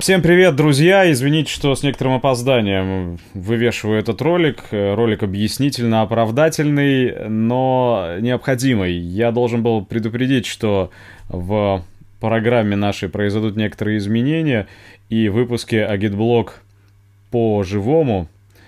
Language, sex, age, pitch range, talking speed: Russian, male, 20-39, 100-120 Hz, 100 wpm